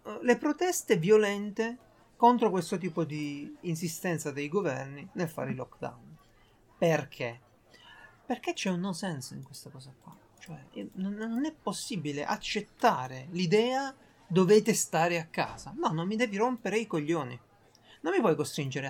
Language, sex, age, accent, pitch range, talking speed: Italian, male, 30-49, native, 150-225 Hz, 145 wpm